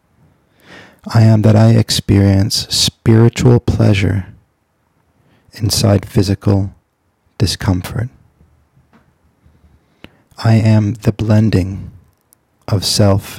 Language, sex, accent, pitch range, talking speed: English, male, American, 95-110 Hz, 70 wpm